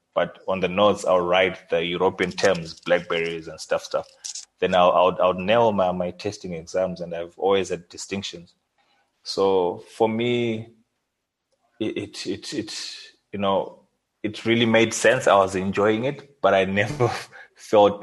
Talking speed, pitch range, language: 160 wpm, 90-100 Hz, English